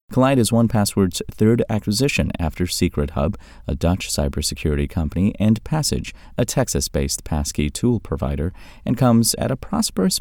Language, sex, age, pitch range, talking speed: English, male, 30-49, 80-110 Hz, 145 wpm